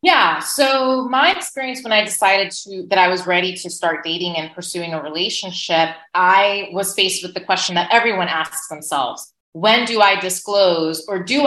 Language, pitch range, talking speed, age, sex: English, 170-225 Hz, 185 wpm, 20-39, female